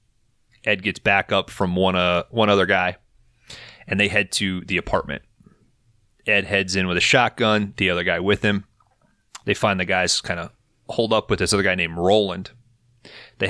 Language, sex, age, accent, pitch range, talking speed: English, male, 30-49, American, 90-115 Hz, 185 wpm